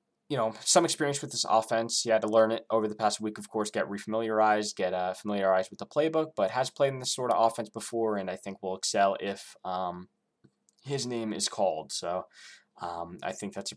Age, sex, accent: 20-39, male, American